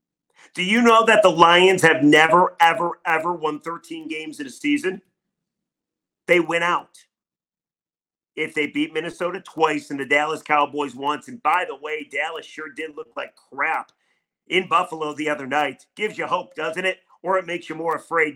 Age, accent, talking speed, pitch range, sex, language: 40-59, American, 180 wpm, 155-205 Hz, male, English